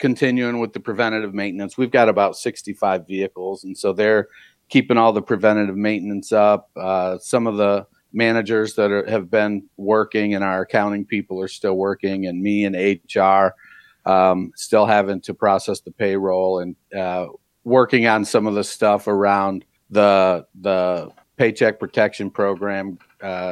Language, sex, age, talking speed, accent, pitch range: English, male, 50-69, 155 wpm, American, 95-115 Hz